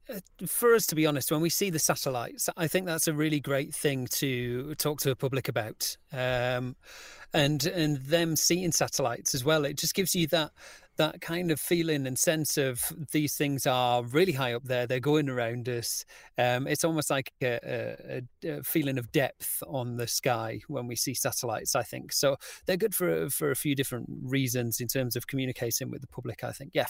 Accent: British